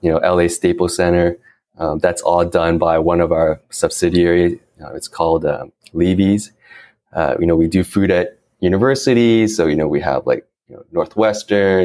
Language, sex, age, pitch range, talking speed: English, male, 20-39, 85-100 Hz, 185 wpm